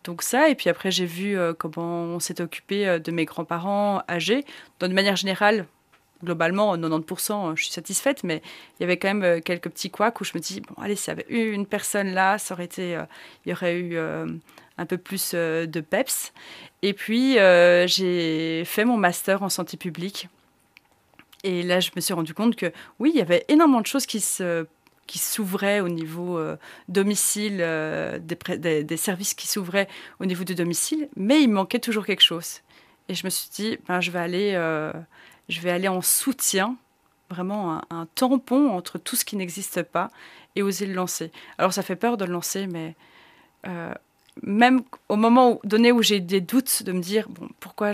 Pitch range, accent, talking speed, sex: 170-205 Hz, French, 200 wpm, female